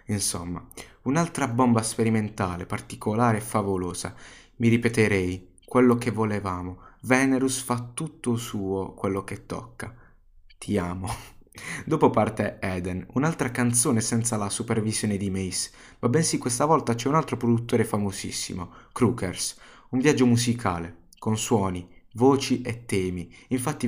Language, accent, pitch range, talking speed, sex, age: Italian, native, 100-125 Hz, 125 wpm, male, 20-39